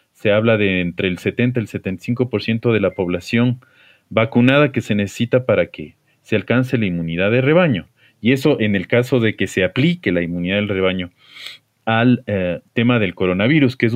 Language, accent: Spanish, Mexican